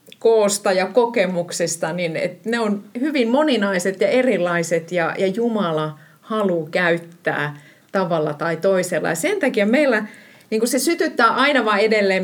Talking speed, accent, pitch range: 140 wpm, native, 170-225 Hz